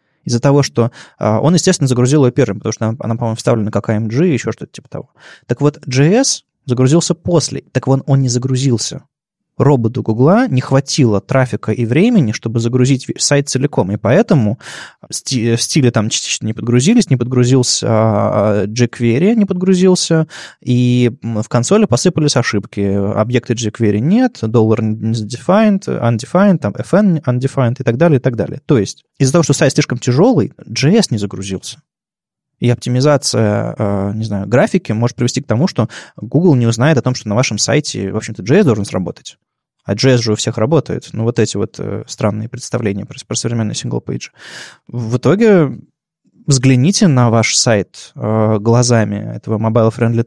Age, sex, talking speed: 20-39, male, 160 wpm